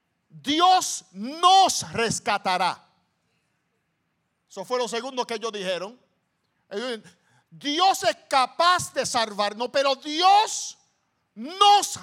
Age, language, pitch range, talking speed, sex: 50-69, English, 200-265 Hz, 90 wpm, male